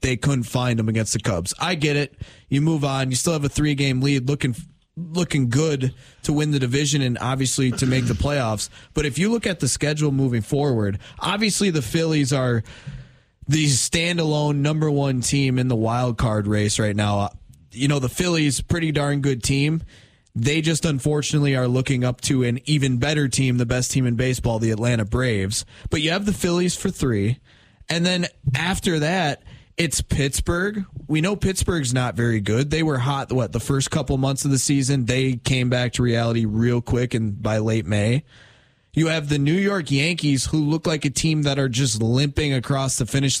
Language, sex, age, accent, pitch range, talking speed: English, male, 20-39, American, 120-150 Hz, 200 wpm